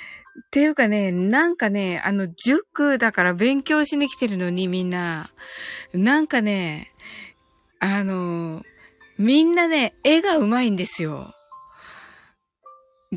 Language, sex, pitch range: Japanese, female, 195-275 Hz